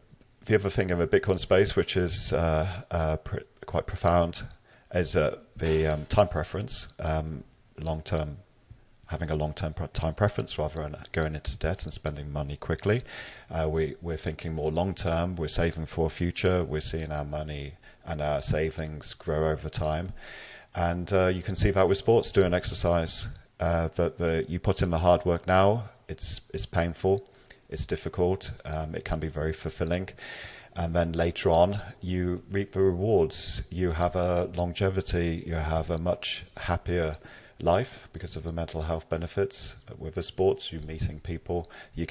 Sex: male